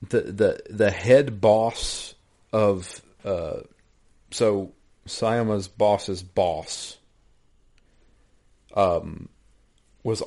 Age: 40-59